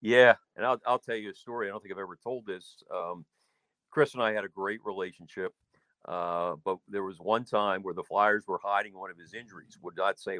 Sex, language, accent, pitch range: male, English, American, 95-130 Hz